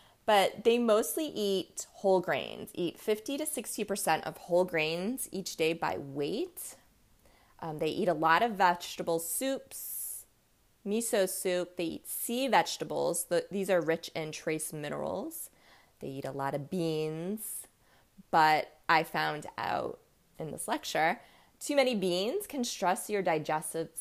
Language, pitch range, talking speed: English, 160-210 Hz, 140 wpm